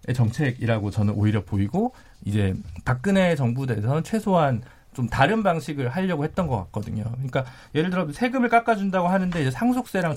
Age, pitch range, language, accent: 40-59, 125-190 Hz, Korean, native